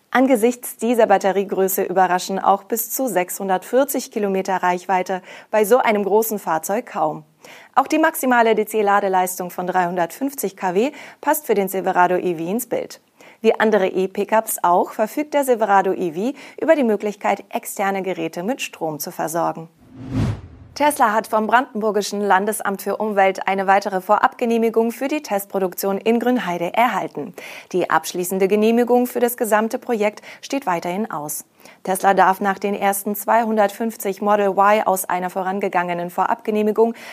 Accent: German